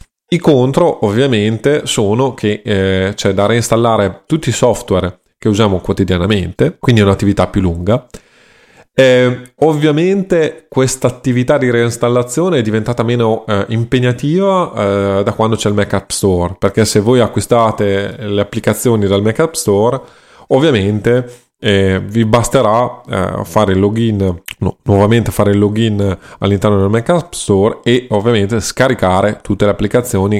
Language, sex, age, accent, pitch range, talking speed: Italian, male, 20-39, native, 100-120 Hz, 140 wpm